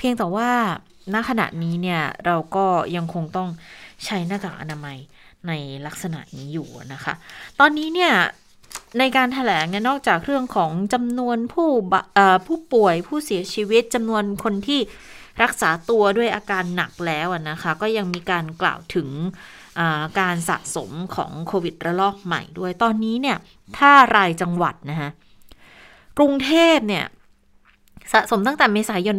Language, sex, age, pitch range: Thai, female, 20-39, 170-225 Hz